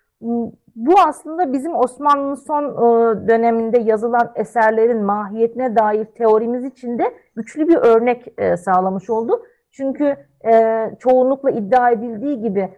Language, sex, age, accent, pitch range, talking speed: Turkish, female, 40-59, native, 220-285 Hz, 110 wpm